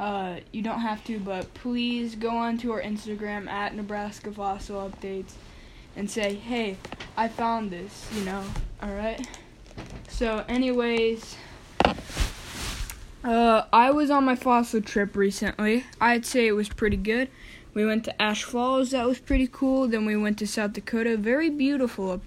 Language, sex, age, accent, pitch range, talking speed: English, female, 10-29, American, 210-250 Hz, 160 wpm